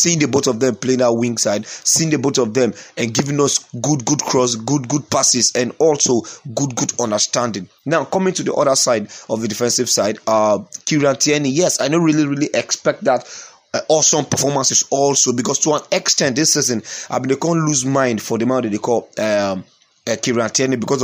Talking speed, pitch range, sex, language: 205 wpm, 115-150 Hz, male, English